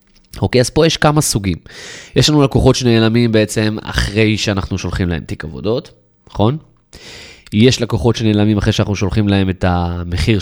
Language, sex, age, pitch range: Hebrew, male, 20-39, 95-135 Hz